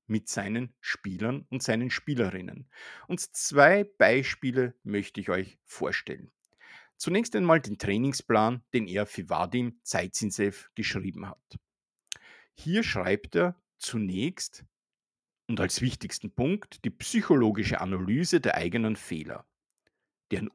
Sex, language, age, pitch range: male, German, 50-69, 100-140 Hz